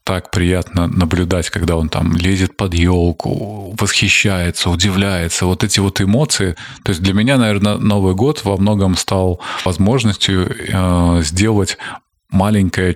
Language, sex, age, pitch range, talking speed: Russian, male, 20-39, 90-105 Hz, 130 wpm